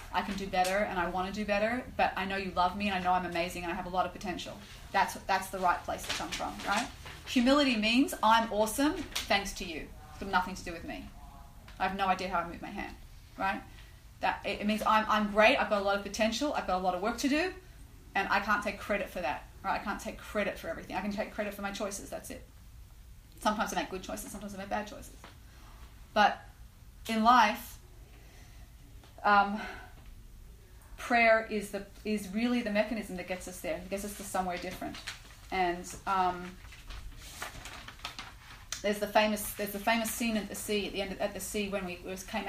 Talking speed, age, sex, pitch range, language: 225 wpm, 30-49, female, 190-220 Hz, English